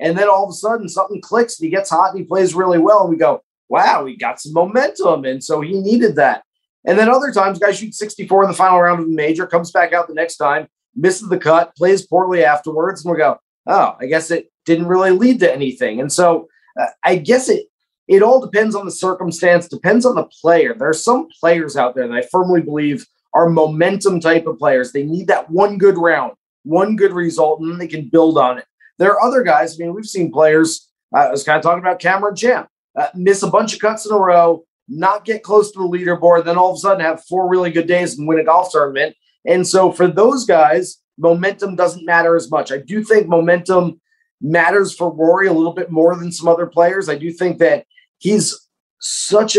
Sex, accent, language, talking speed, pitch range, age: male, American, English, 235 wpm, 160-195 Hz, 30-49